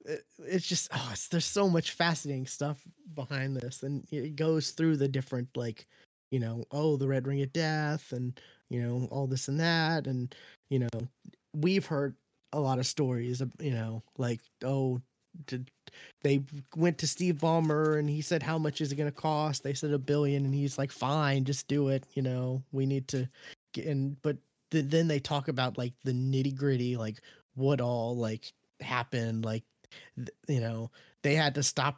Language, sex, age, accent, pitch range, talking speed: English, male, 20-39, American, 130-150 Hz, 195 wpm